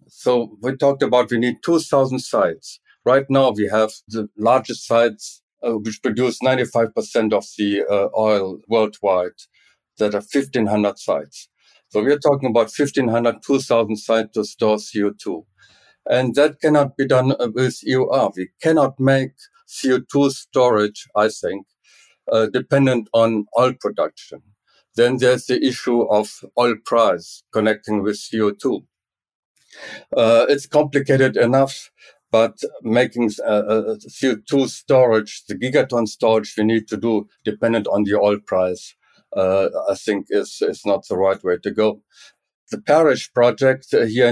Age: 50-69